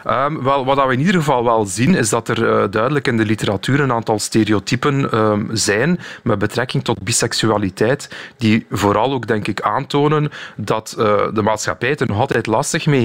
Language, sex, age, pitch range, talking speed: Dutch, male, 30-49, 105-135 Hz, 180 wpm